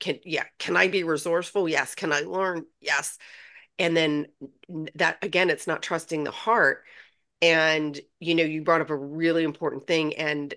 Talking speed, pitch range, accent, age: 175 wpm, 155-205 Hz, American, 30-49